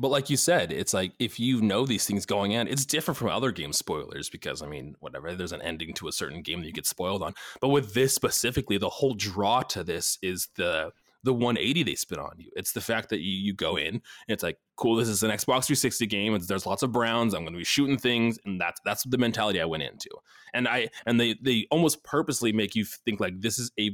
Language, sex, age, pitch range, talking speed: English, male, 20-39, 95-120 Hz, 260 wpm